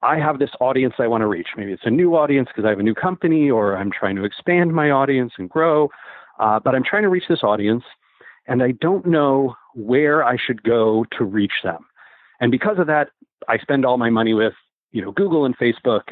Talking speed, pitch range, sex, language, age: 230 wpm, 110-140 Hz, male, English, 40-59